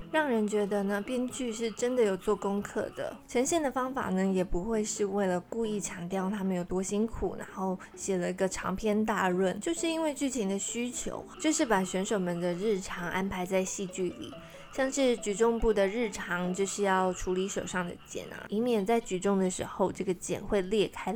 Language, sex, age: Chinese, female, 20-39